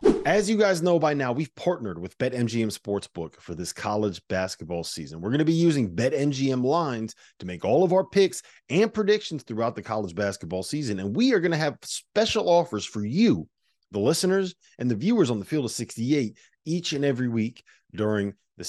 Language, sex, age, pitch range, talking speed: English, male, 30-49, 105-170 Hz, 200 wpm